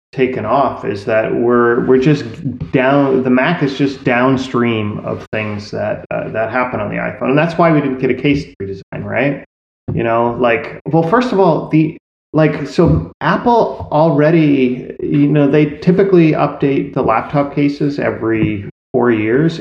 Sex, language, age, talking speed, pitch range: male, English, 30-49, 170 wpm, 125-165 Hz